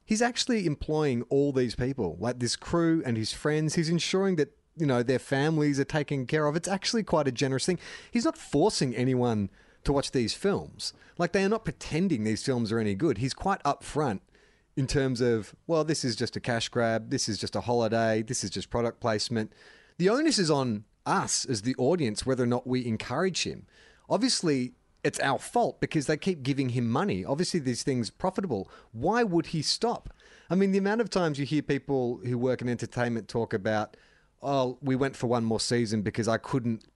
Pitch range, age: 115-160 Hz, 30-49